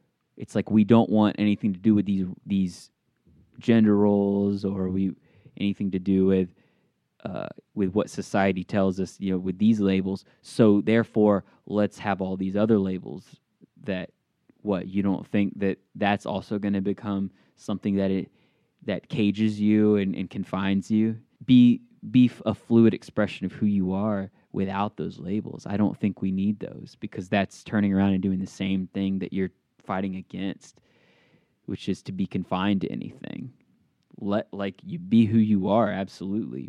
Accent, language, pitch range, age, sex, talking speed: American, English, 95-110 Hz, 20-39, male, 170 wpm